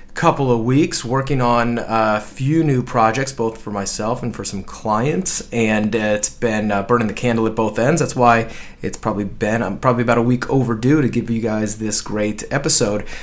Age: 30-49